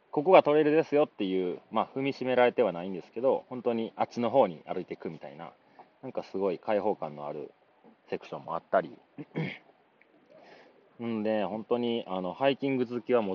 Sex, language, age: male, Japanese, 30-49